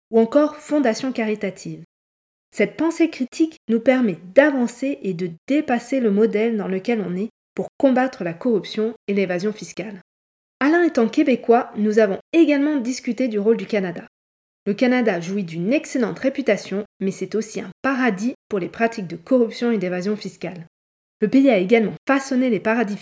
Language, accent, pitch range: French, French, 200-260 Hz